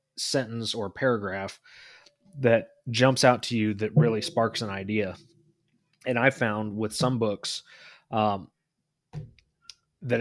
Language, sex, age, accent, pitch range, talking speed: English, male, 30-49, American, 100-125 Hz, 125 wpm